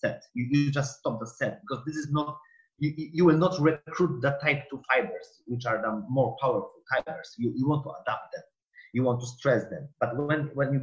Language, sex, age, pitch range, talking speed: English, male, 30-49, 125-160 Hz, 220 wpm